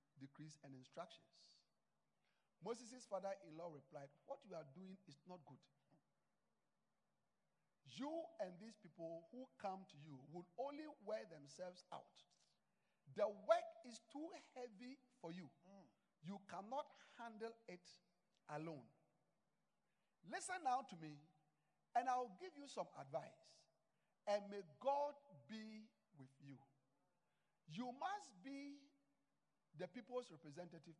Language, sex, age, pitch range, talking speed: English, male, 50-69, 150-235 Hz, 115 wpm